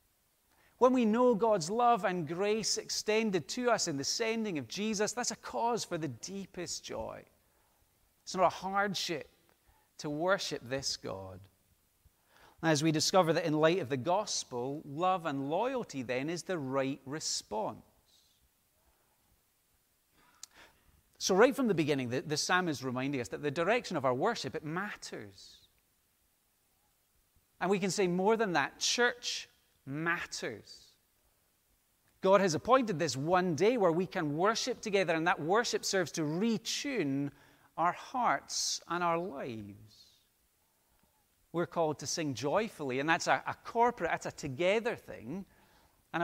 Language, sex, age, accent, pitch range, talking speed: English, male, 40-59, British, 135-195 Hz, 145 wpm